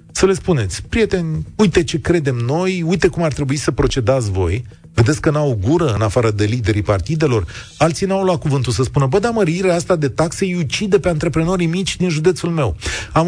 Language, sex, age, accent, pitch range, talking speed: Romanian, male, 30-49, native, 110-170 Hz, 200 wpm